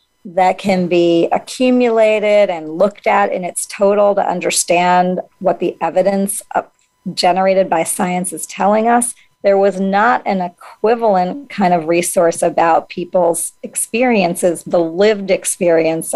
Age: 40-59